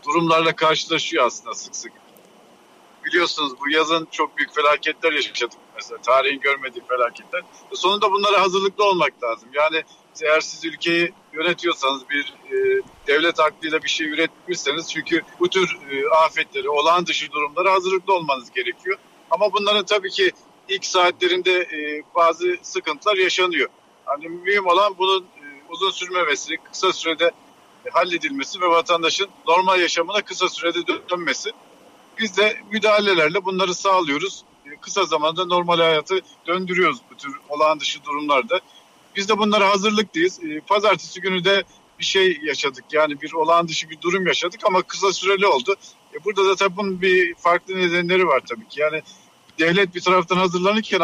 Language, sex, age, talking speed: Turkish, male, 50-69, 145 wpm